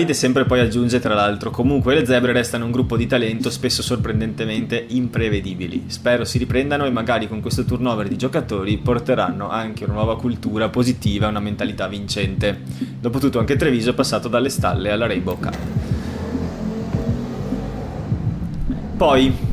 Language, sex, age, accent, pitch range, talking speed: Italian, male, 20-39, native, 110-130 Hz, 145 wpm